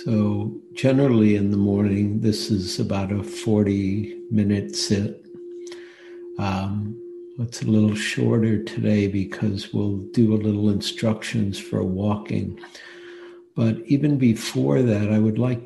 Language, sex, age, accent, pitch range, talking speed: English, male, 60-79, American, 105-120 Hz, 125 wpm